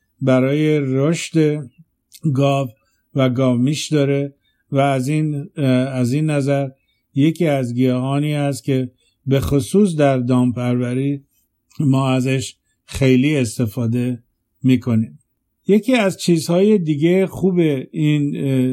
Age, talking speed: 50-69, 105 wpm